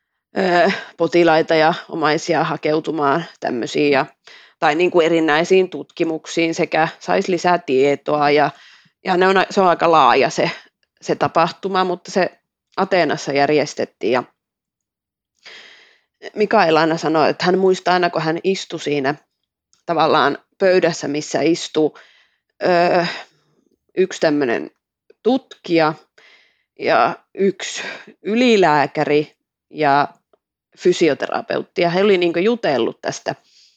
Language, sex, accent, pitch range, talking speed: Finnish, female, native, 150-185 Hz, 100 wpm